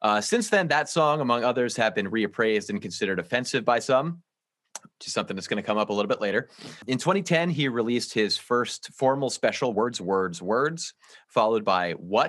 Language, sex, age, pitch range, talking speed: English, male, 30-49, 105-140 Hz, 200 wpm